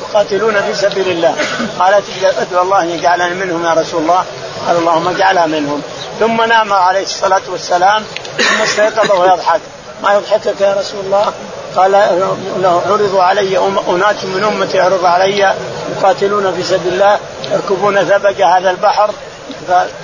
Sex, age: male, 50-69